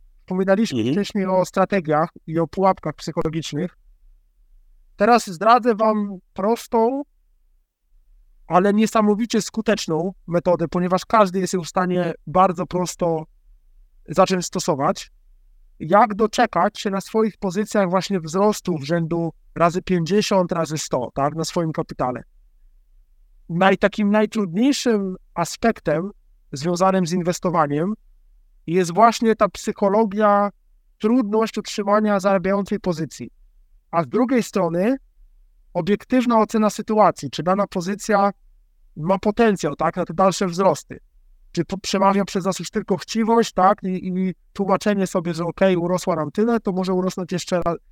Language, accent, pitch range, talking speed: Polish, native, 170-205 Hz, 125 wpm